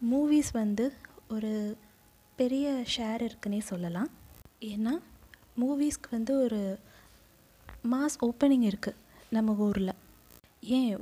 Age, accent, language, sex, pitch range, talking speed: 20-39, native, Tamil, female, 220-275 Hz, 95 wpm